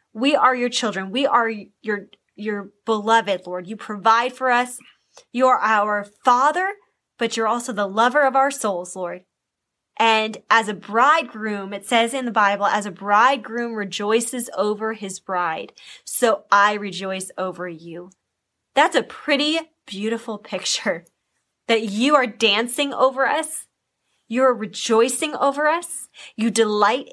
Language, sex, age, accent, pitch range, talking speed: English, female, 10-29, American, 205-255 Hz, 145 wpm